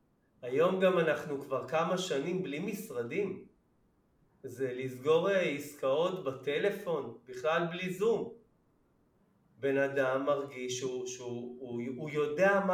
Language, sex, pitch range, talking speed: Hebrew, male, 135-195 Hz, 115 wpm